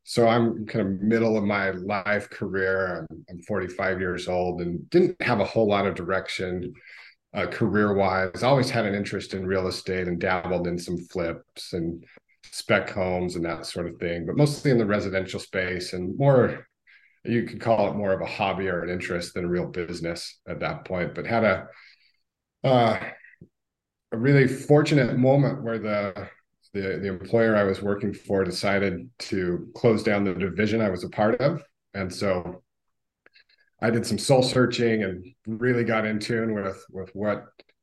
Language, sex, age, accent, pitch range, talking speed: English, male, 40-59, American, 95-115 Hz, 180 wpm